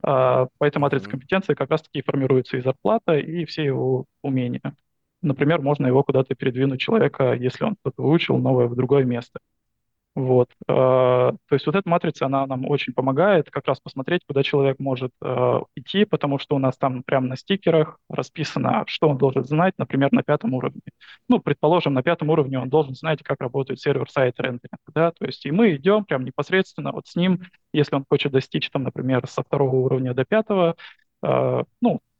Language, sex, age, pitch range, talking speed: Russian, male, 20-39, 130-165 Hz, 175 wpm